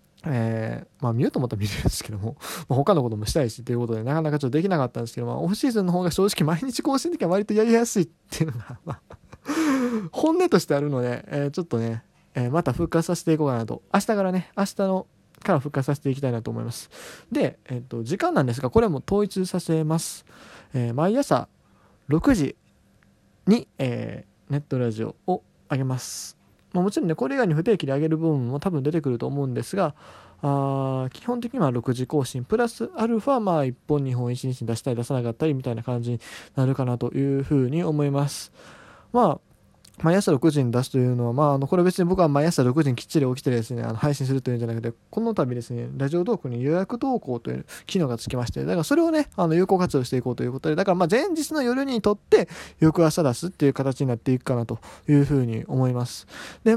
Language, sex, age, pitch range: Japanese, male, 20-39, 125-185 Hz